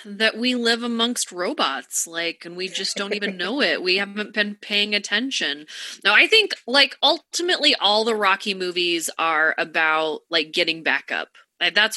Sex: female